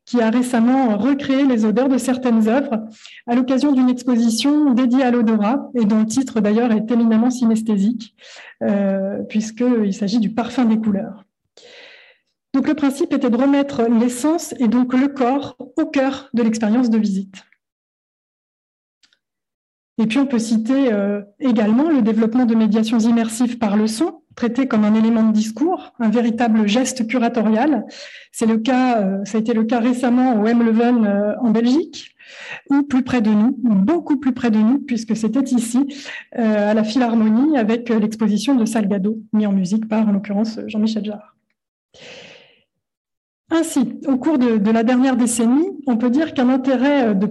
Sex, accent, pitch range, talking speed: female, French, 220-270 Hz, 165 wpm